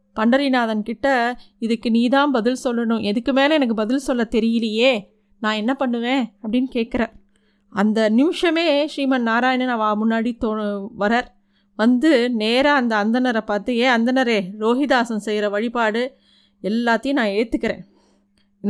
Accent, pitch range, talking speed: native, 215-260 Hz, 120 wpm